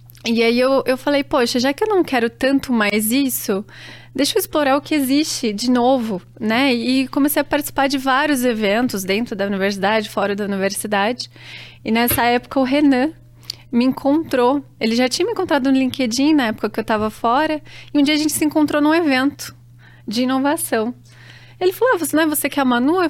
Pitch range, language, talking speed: 215-275 Hz, Portuguese, 205 wpm